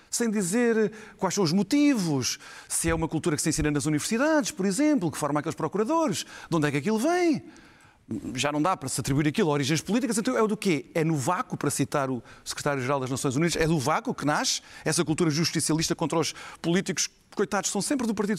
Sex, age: male, 40-59